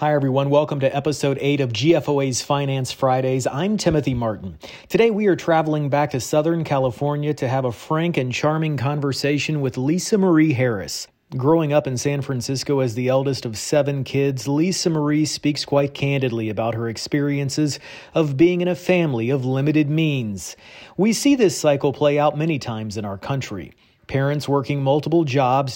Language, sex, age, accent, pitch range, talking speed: English, male, 40-59, American, 135-160 Hz, 170 wpm